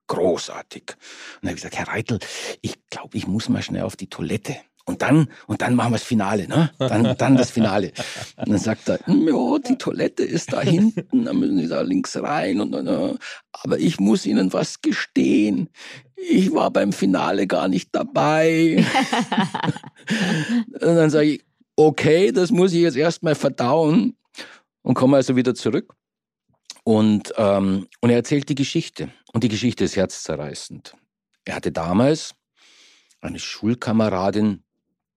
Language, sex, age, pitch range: German, male, 50-69, 90-150 Hz